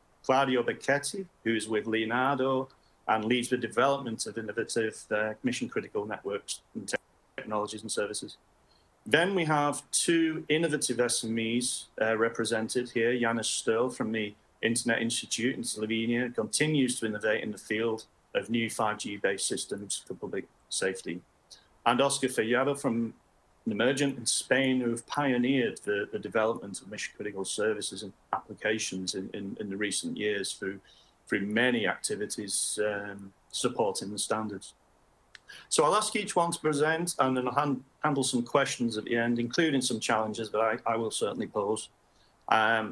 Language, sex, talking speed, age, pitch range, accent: English, male, 150 wpm, 40-59, 115-135 Hz, British